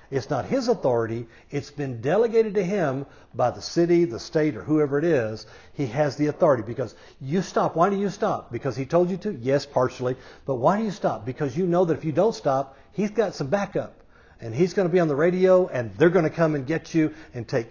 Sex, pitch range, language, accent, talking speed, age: male, 130-185 Hz, English, American, 240 wpm, 50-69